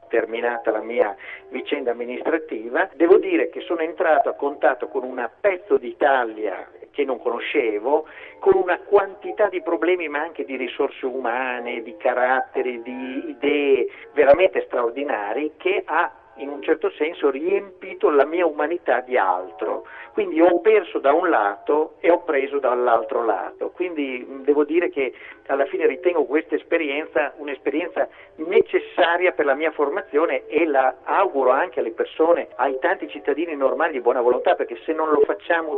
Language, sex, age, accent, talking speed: Italian, male, 50-69, native, 155 wpm